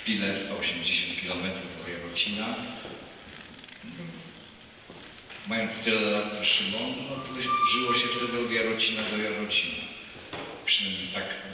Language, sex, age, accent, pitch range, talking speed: Polish, male, 50-69, native, 95-115 Hz, 110 wpm